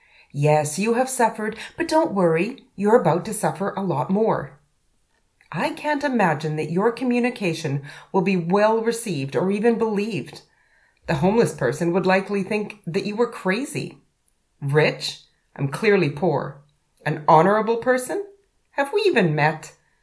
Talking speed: 140 wpm